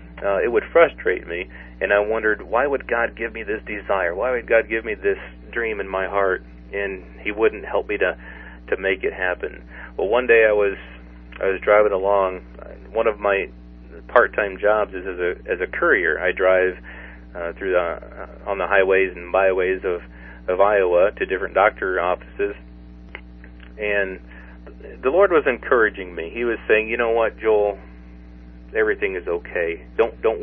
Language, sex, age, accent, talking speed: English, male, 40-59, American, 180 wpm